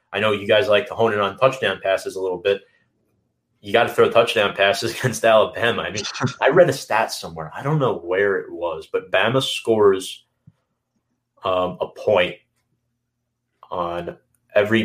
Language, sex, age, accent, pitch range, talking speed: English, male, 30-49, American, 105-135 Hz, 175 wpm